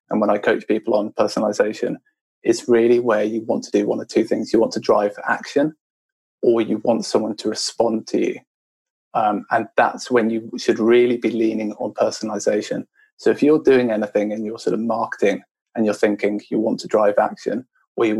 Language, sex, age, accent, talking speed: English, male, 20-39, British, 205 wpm